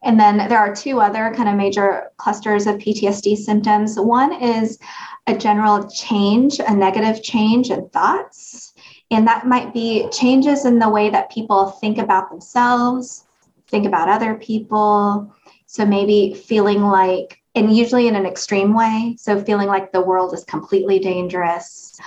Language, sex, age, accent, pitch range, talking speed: English, female, 20-39, American, 185-220 Hz, 160 wpm